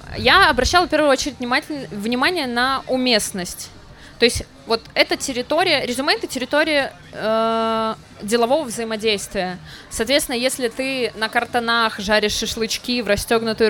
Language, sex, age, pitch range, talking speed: Russian, female, 20-39, 220-265 Hz, 125 wpm